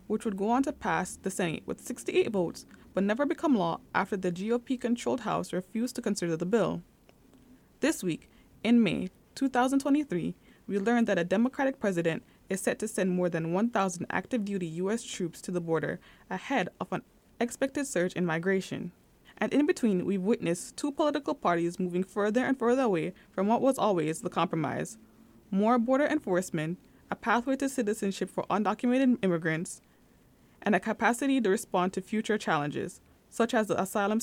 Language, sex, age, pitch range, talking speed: English, female, 20-39, 180-240 Hz, 170 wpm